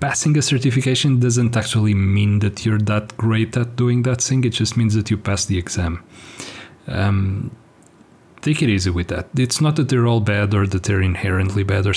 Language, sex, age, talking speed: English, male, 30-49, 200 wpm